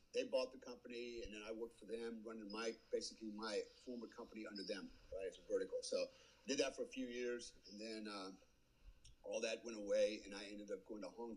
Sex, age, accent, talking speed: male, 50-69, American, 230 wpm